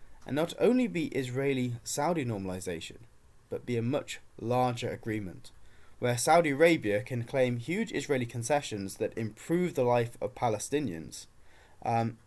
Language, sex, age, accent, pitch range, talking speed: English, male, 20-39, British, 105-135 Hz, 135 wpm